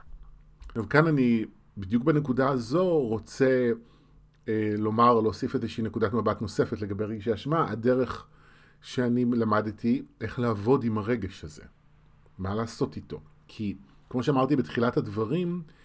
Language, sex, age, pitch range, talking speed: Hebrew, male, 30-49, 105-130 Hz, 130 wpm